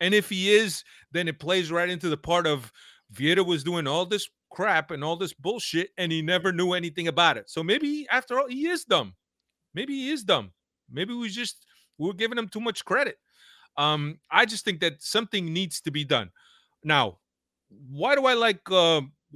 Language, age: English, 30-49